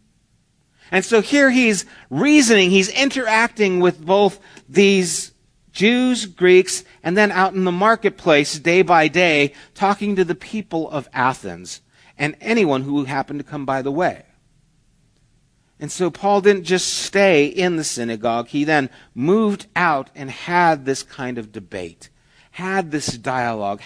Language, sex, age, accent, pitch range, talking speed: English, male, 50-69, American, 145-205 Hz, 145 wpm